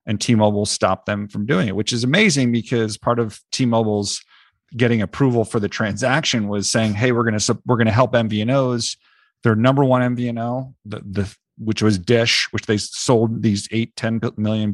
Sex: male